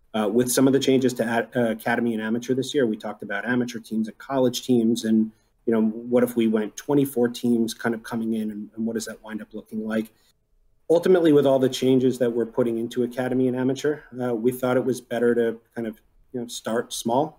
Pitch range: 110-125 Hz